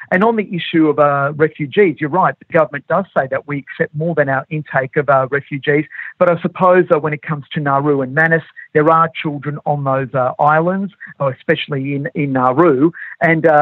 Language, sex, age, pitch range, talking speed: English, male, 50-69, 145-170 Hz, 205 wpm